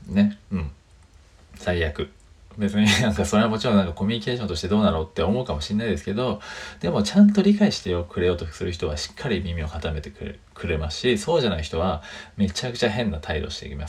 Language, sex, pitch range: Japanese, male, 80-105 Hz